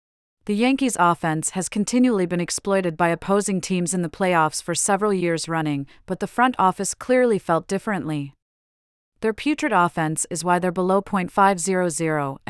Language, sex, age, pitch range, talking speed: English, female, 40-59, 160-200 Hz, 155 wpm